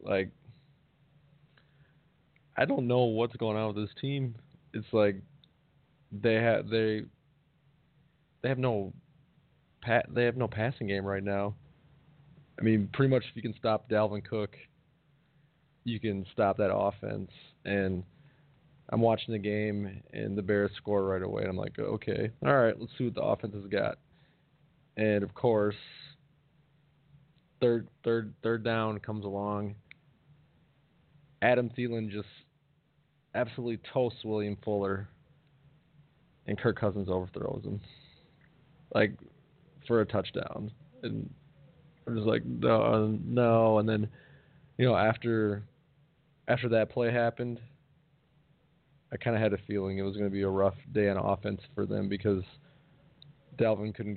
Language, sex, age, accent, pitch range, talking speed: English, male, 20-39, American, 105-145 Hz, 140 wpm